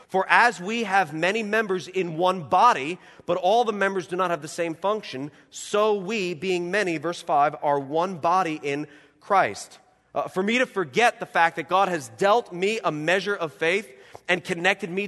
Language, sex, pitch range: English, male, 110-175 Hz